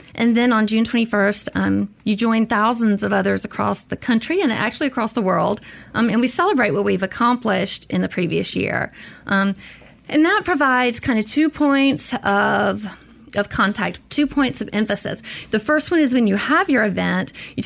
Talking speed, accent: 185 wpm, American